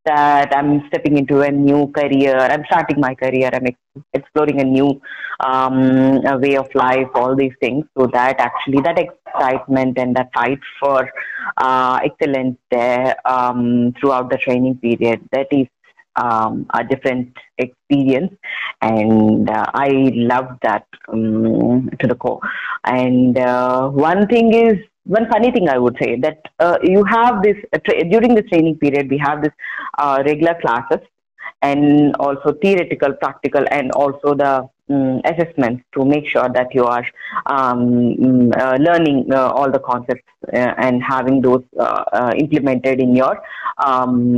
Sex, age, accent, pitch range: female, 30-49, Indian, 125-150 Hz